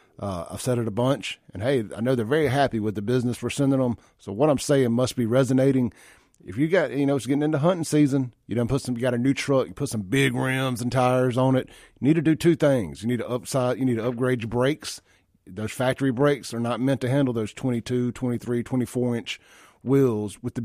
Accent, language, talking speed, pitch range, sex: American, English, 260 wpm, 115-140 Hz, male